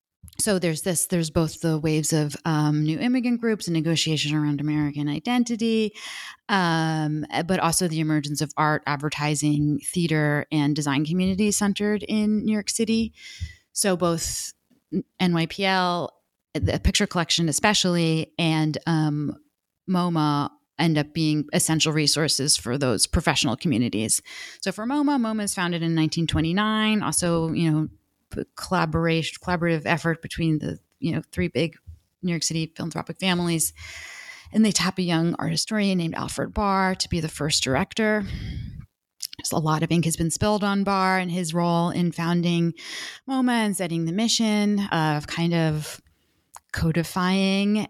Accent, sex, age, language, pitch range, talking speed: American, female, 30-49, English, 150-190 Hz, 145 wpm